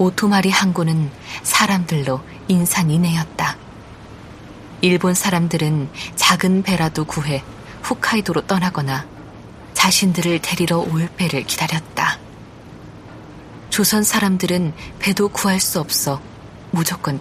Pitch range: 145-185 Hz